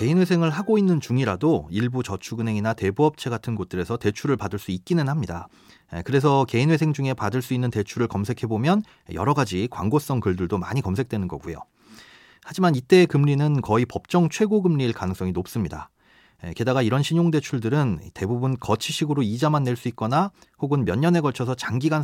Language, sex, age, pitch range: Korean, male, 30-49, 105-150 Hz